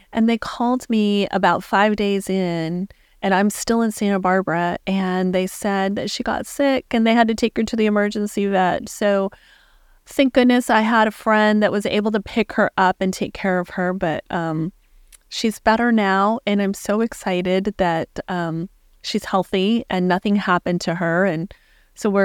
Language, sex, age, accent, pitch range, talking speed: English, female, 30-49, American, 175-210 Hz, 190 wpm